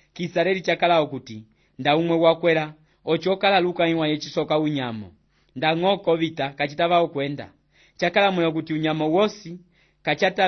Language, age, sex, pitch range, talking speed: English, 30-49, male, 135-165 Hz, 130 wpm